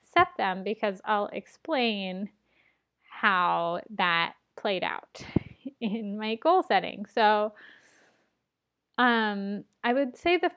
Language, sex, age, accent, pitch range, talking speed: English, female, 10-29, American, 195-245 Hz, 100 wpm